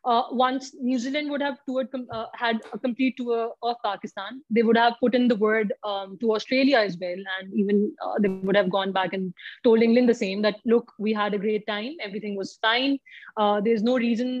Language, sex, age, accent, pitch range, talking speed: English, female, 20-39, Indian, 215-265 Hz, 220 wpm